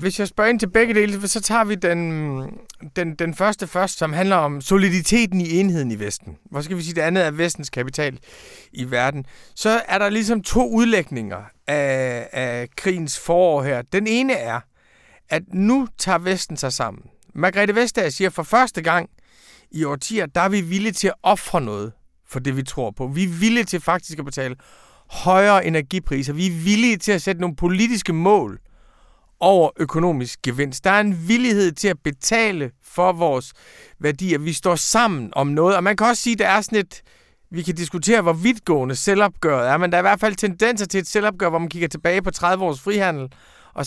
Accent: native